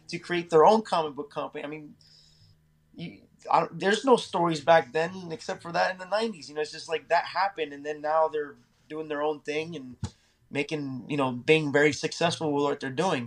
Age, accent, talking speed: 20-39, American, 215 wpm